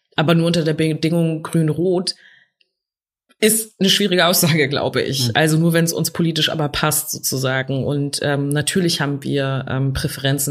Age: 20-39